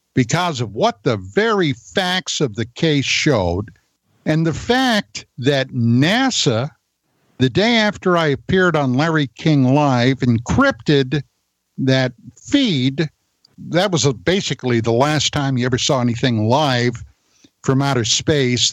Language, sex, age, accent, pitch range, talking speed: English, male, 60-79, American, 115-155 Hz, 130 wpm